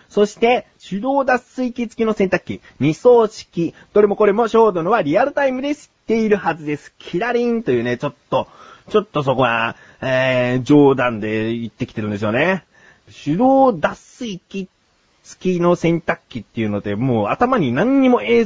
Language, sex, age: Japanese, male, 30-49